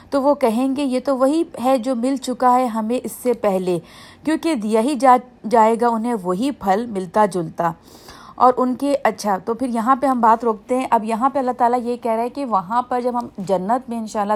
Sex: female